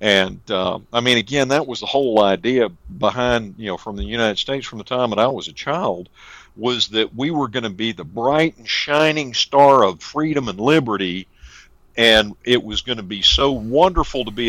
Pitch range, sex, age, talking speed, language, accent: 95-130 Hz, male, 50-69, 210 wpm, English, American